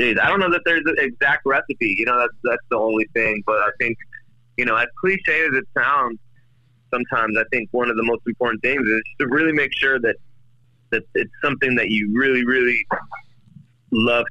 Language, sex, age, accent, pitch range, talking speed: English, male, 30-49, American, 105-125 Hz, 200 wpm